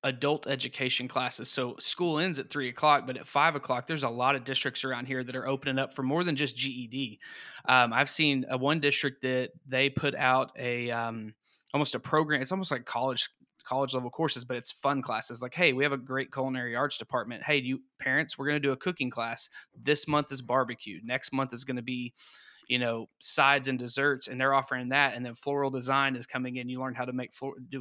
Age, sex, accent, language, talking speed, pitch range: 20-39, male, American, English, 235 wpm, 125-145 Hz